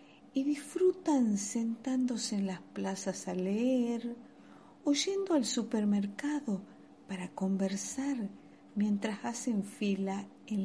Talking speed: 100 wpm